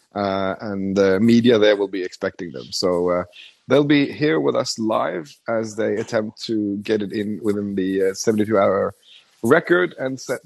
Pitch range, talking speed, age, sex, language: 100-125 Hz, 190 wpm, 30-49, male, English